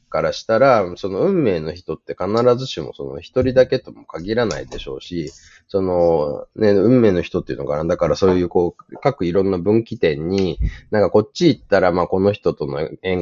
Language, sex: Japanese, male